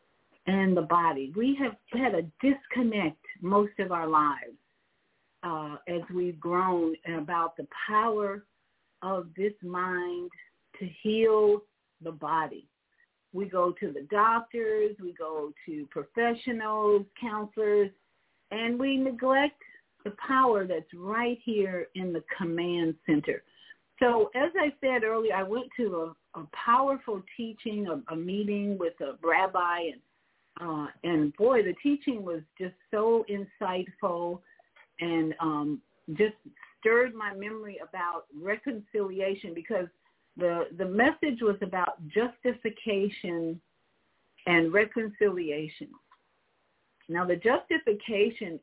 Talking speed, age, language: 120 wpm, 50-69, English